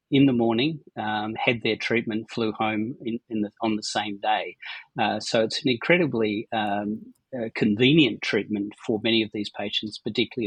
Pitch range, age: 105-120 Hz, 40-59